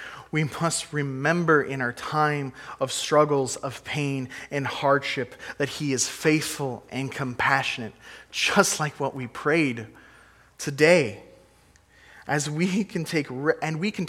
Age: 20-39